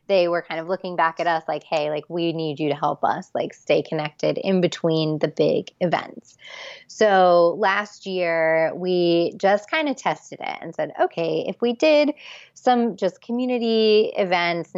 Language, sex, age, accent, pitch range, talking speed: English, female, 20-39, American, 165-215 Hz, 180 wpm